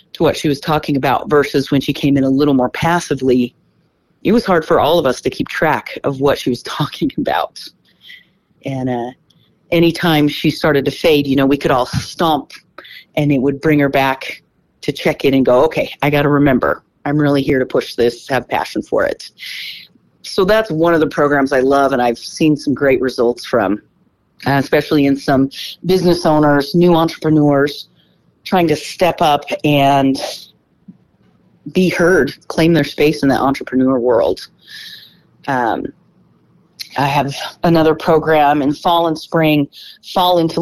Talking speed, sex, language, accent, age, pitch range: 175 wpm, female, English, American, 40-59, 140-160 Hz